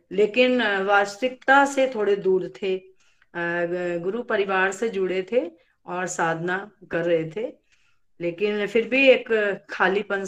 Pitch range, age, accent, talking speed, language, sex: 175-215 Hz, 40-59, native, 125 wpm, Hindi, female